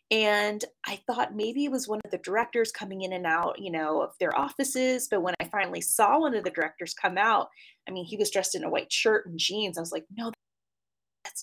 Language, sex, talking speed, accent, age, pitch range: English, female, 240 wpm, American, 20-39, 185-255 Hz